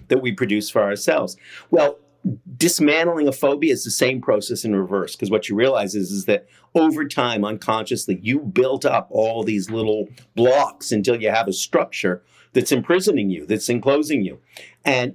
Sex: male